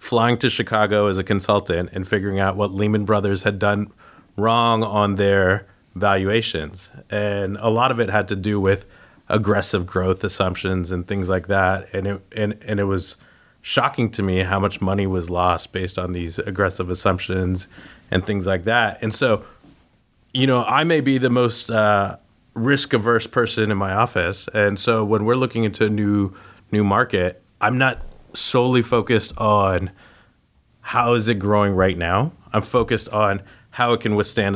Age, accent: 30-49, American